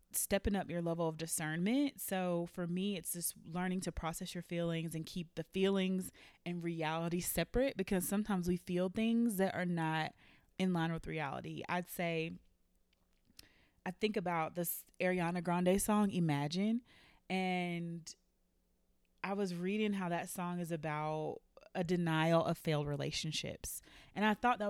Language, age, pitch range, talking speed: English, 20-39, 165-190 Hz, 155 wpm